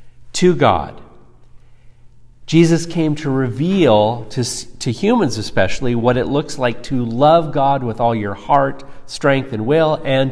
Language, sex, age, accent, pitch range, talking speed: English, male, 50-69, American, 115-145 Hz, 145 wpm